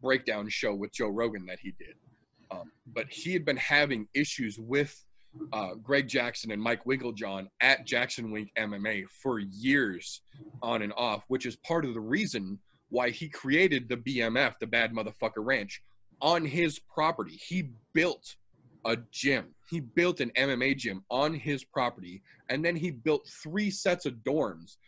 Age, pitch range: 30-49, 115-150 Hz